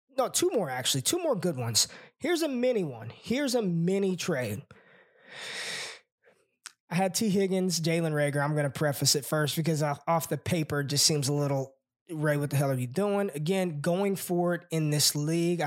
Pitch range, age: 135-180 Hz, 20-39